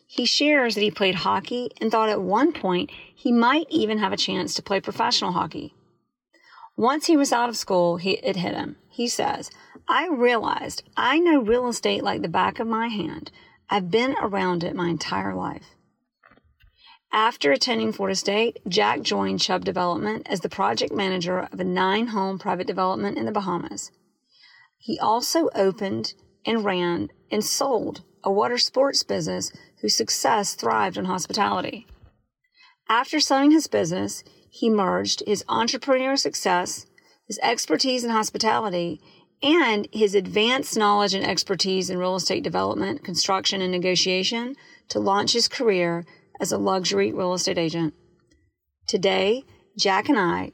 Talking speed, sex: 150 wpm, female